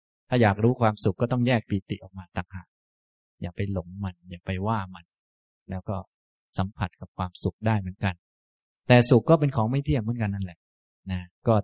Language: Thai